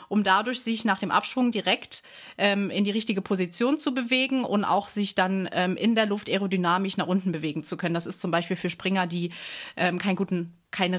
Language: German